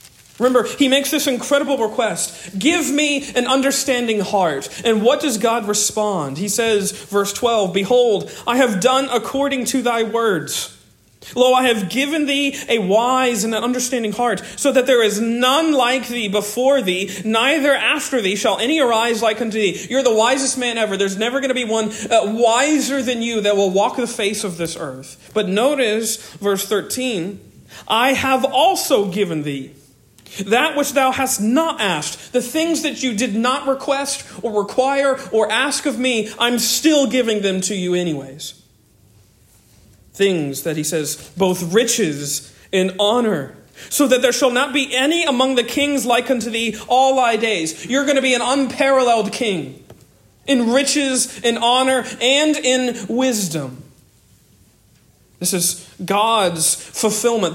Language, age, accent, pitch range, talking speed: English, 40-59, American, 195-260 Hz, 165 wpm